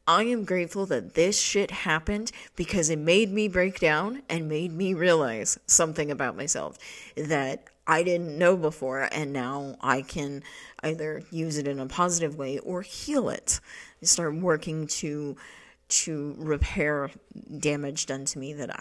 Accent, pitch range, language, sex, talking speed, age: American, 145-180 Hz, English, female, 160 wpm, 30-49